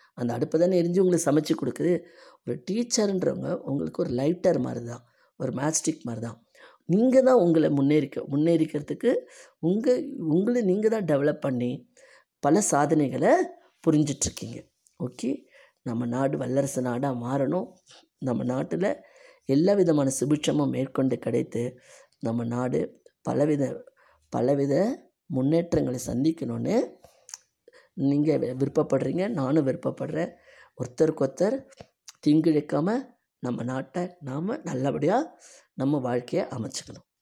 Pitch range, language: 125-180 Hz, Tamil